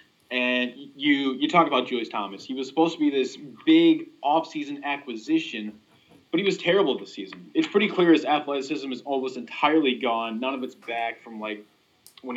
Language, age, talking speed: English, 20-39, 185 wpm